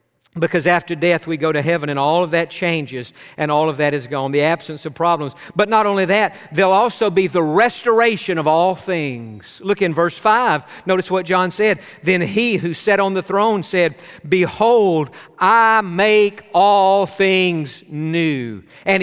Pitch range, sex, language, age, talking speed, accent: 170-220 Hz, male, English, 50-69, 180 wpm, American